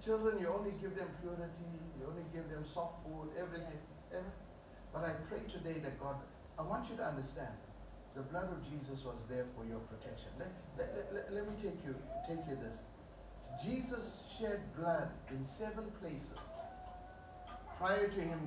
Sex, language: male, English